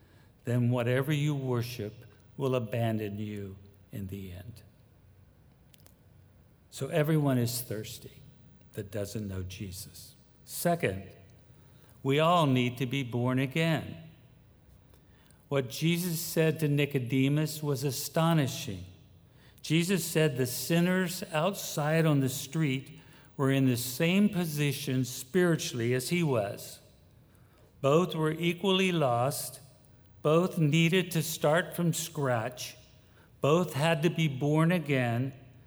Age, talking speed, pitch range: 60-79, 110 wpm, 115-155 Hz